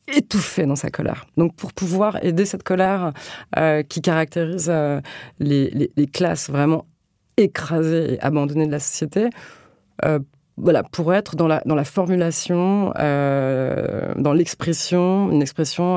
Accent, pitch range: French, 140-170 Hz